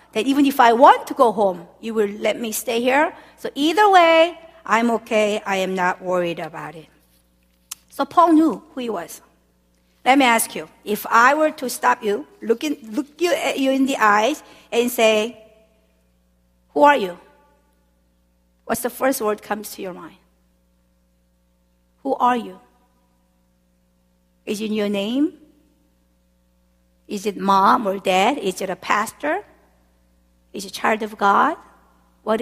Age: 50-69